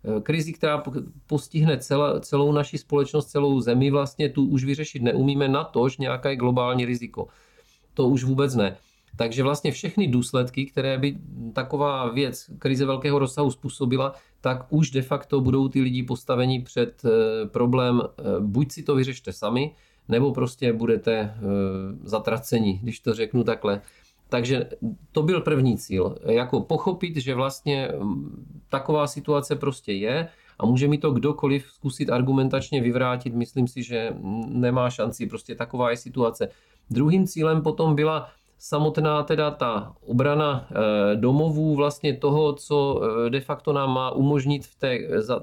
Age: 40-59